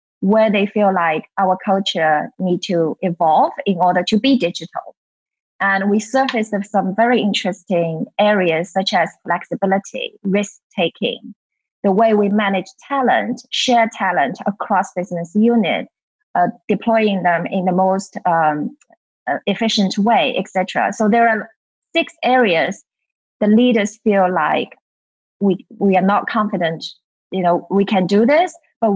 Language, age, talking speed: English, 20-39, 135 wpm